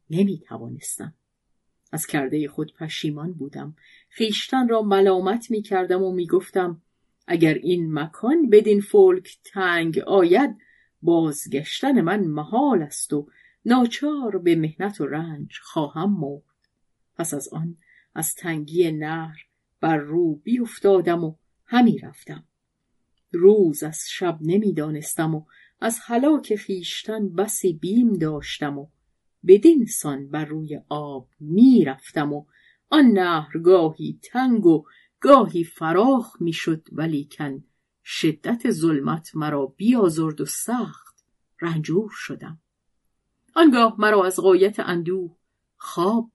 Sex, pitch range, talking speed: female, 155-210 Hz, 110 wpm